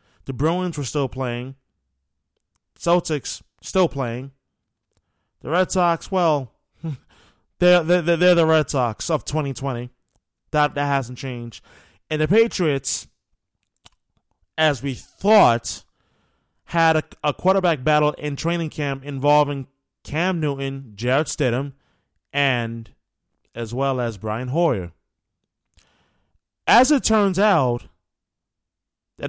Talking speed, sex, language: 110 wpm, male, English